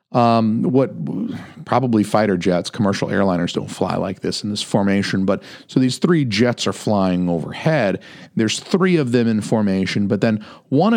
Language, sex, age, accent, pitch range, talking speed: English, male, 40-59, American, 100-130 Hz, 170 wpm